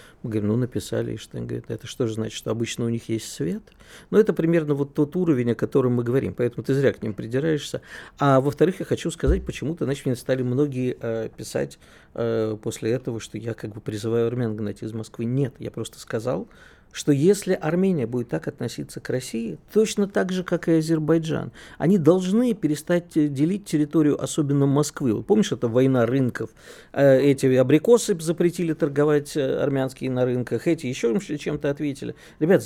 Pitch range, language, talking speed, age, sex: 120-170 Hz, Russian, 175 wpm, 50-69, male